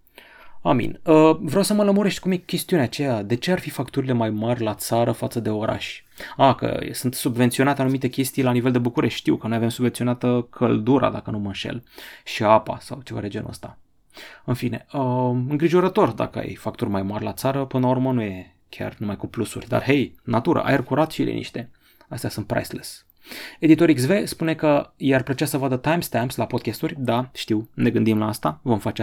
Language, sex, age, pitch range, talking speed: Romanian, male, 30-49, 110-145 Hz, 205 wpm